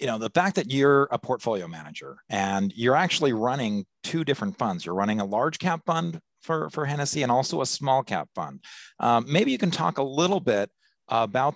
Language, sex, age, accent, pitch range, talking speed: English, male, 30-49, American, 100-145 Hz, 210 wpm